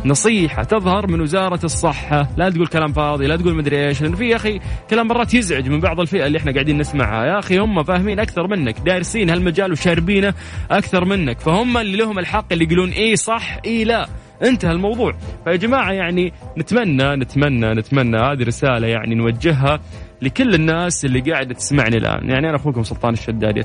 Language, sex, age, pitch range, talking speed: English, male, 20-39, 125-180 Hz, 175 wpm